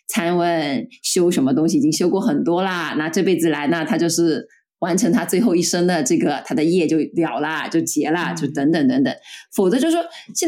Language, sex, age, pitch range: Chinese, female, 20-39, 175-265 Hz